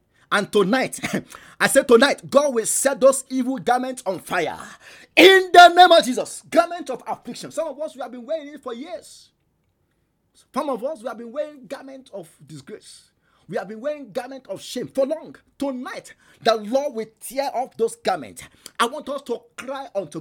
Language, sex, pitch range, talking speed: English, male, 250-300 Hz, 190 wpm